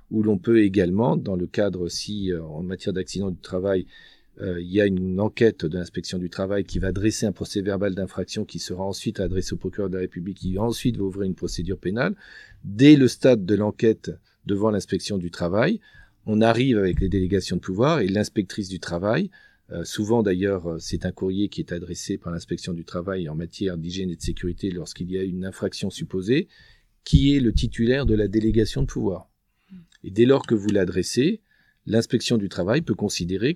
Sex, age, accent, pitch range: male, 40-59, French, 95-110 Hz